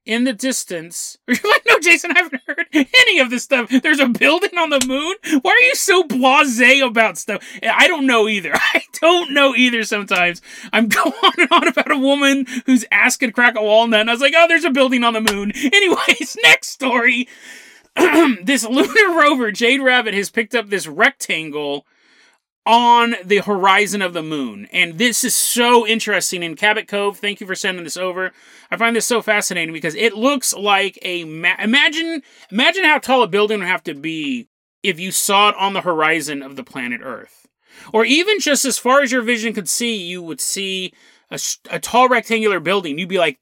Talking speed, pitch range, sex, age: 205 wpm, 200-275 Hz, male, 30-49